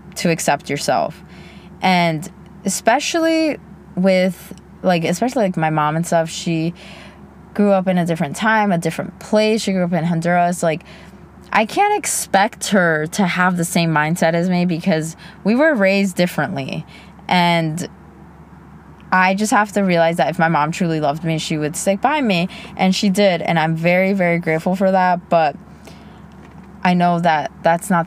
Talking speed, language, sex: 170 wpm, English, female